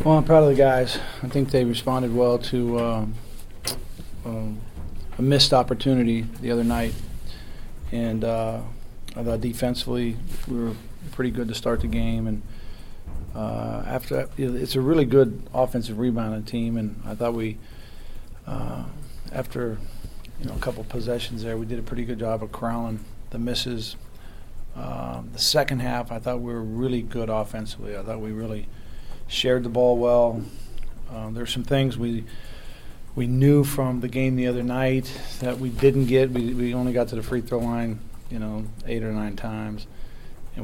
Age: 40-59